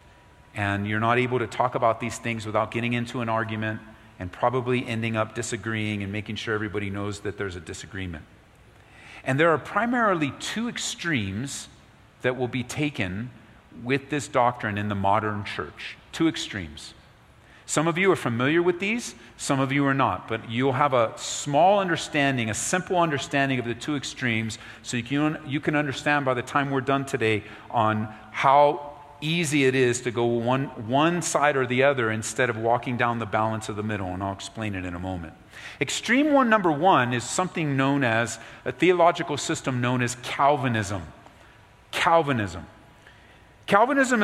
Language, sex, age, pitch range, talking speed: English, male, 40-59, 110-150 Hz, 175 wpm